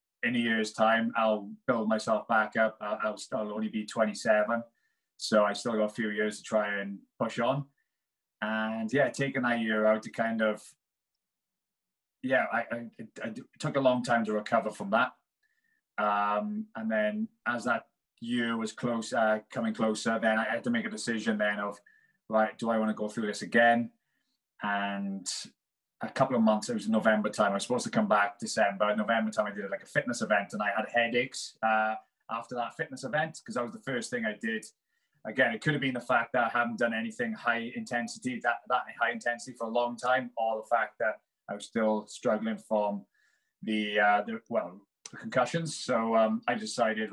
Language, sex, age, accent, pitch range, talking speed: English, male, 20-39, British, 105-120 Hz, 205 wpm